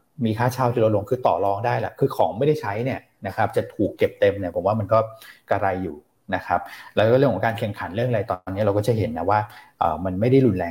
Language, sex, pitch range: Thai, male, 100-125 Hz